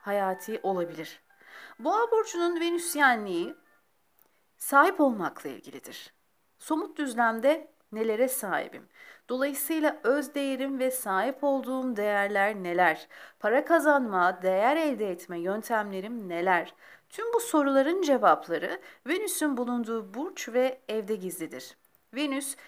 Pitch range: 225-330 Hz